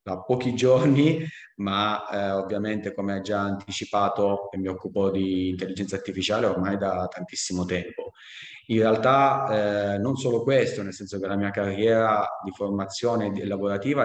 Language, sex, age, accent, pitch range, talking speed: Italian, male, 30-49, native, 100-120 Hz, 150 wpm